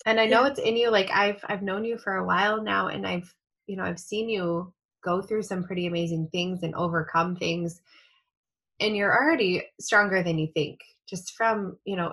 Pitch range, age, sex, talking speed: 165-205 Hz, 20-39, female, 210 wpm